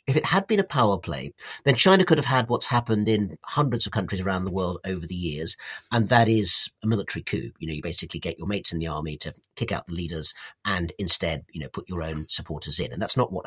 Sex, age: male, 40-59